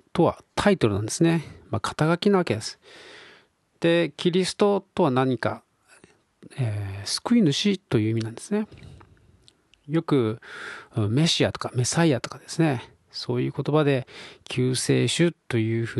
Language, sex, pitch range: Japanese, male, 115-180 Hz